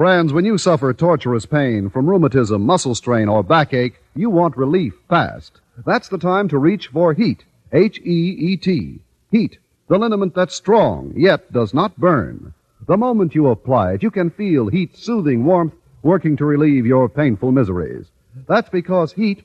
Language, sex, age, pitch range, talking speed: English, male, 50-69, 130-190 Hz, 165 wpm